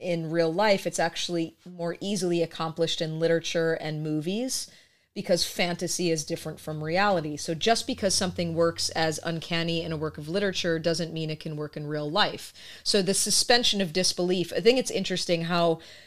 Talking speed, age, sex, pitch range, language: 180 wpm, 30-49, female, 160-180 Hz, English